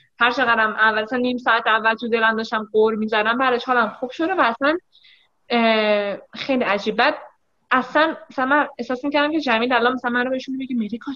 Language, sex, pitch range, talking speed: English, female, 215-290 Hz, 190 wpm